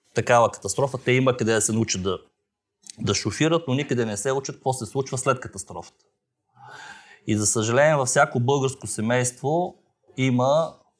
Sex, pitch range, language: male, 105-130 Hz, Bulgarian